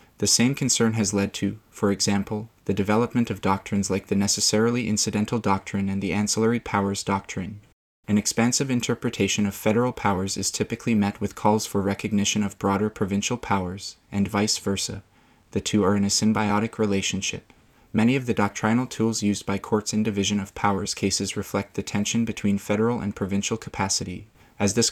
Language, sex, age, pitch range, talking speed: English, male, 20-39, 100-110 Hz, 175 wpm